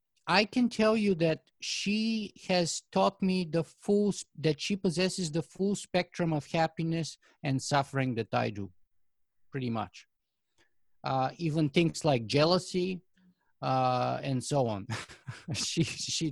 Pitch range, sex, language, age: 130-180 Hz, male, English, 50-69